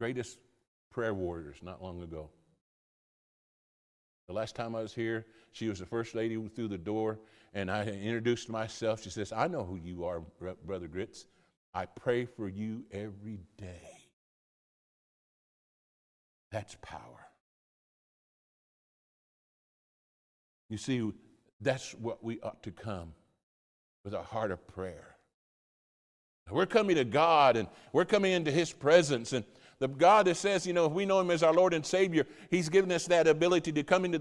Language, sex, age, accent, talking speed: English, male, 50-69, American, 155 wpm